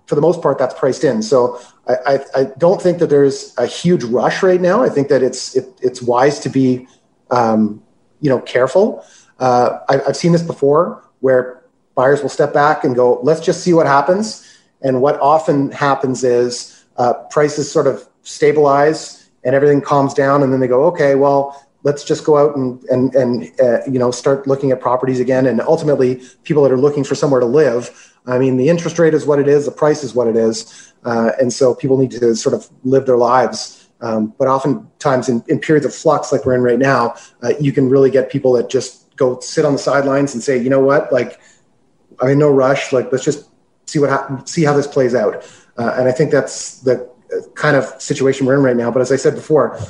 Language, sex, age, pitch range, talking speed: English, male, 30-49, 125-145 Hz, 220 wpm